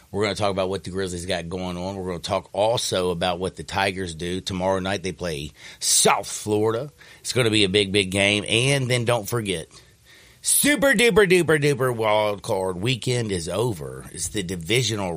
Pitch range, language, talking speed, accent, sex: 85-105 Hz, English, 200 wpm, American, male